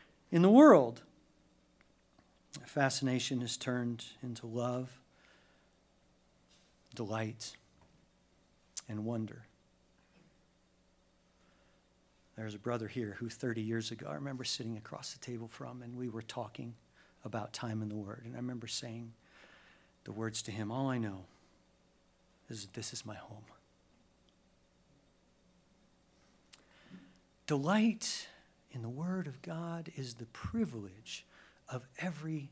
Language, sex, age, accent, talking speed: English, male, 50-69, American, 115 wpm